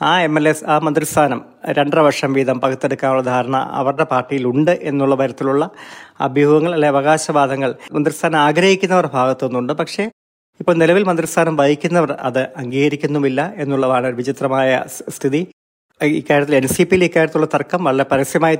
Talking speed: 130 wpm